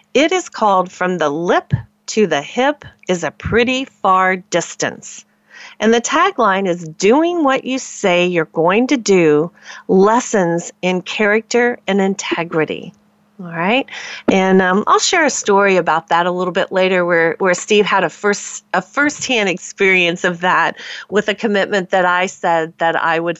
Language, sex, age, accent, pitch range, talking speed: English, female, 40-59, American, 180-240 Hz, 165 wpm